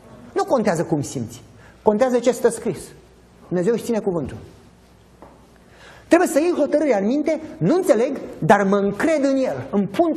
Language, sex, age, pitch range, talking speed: Romanian, male, 30-49, 175-285 Hz, 160 wpm